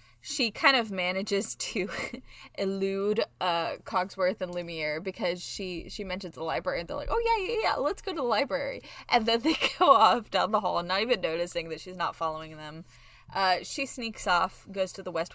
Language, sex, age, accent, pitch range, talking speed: English, female, 20-39, American, 165-195 Hz, 205 wpm